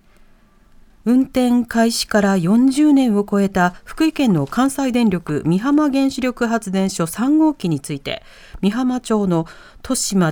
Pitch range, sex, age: 170-245 Hz, female, 40-59